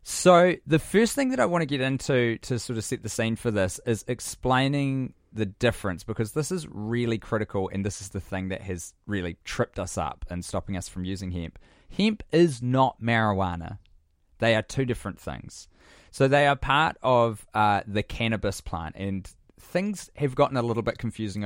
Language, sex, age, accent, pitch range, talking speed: English, male, 20-39, Australian, 95-120 Hz, 195 wpm